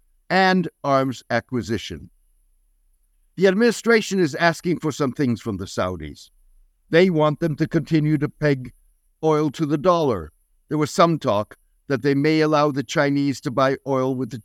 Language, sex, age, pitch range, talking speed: English, male, 60-79, 105-160 Hz, 160 wpm